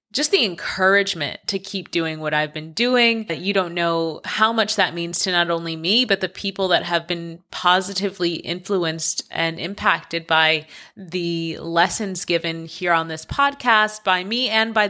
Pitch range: 170-215 Hz